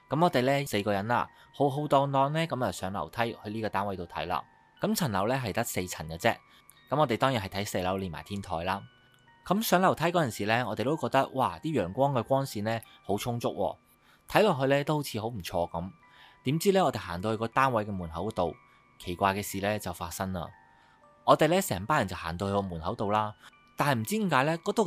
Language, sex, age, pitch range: Chinese, male, 20-39, 95-140 Hz